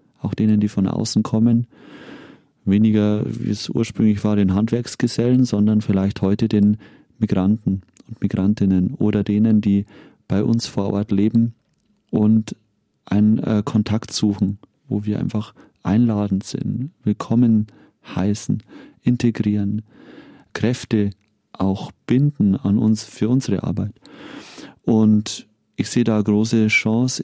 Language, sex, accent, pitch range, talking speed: German, male, German, 100-115 Hz, 125 wpm